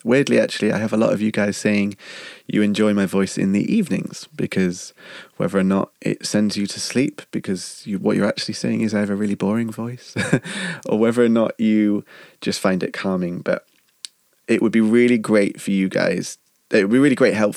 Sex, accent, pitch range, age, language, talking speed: male, British, 95-115 Hz, 20-39, English, 210 wpm